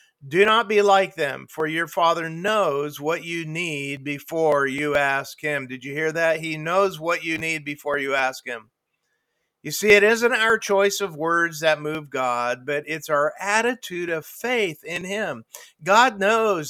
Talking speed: 180 wpm